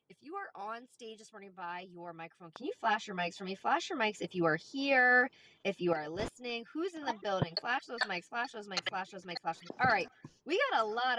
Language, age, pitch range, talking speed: English, 20-39, 185-250 Hz, 270 wpm